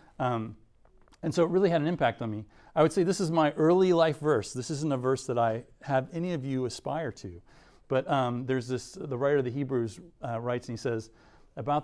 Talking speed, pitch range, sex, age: 235 wpm, 120-155 Hz, male, 40-59